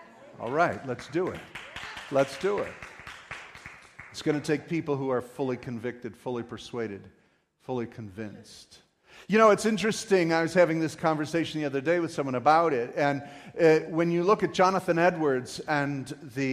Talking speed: 165 wpm